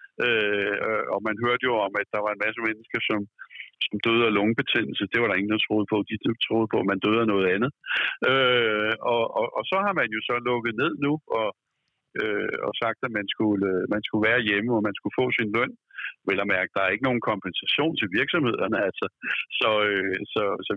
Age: 60-79